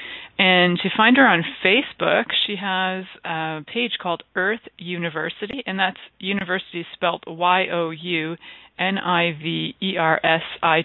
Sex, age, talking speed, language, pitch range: female, 30-49, 150 wpm, English, 165-205 Hz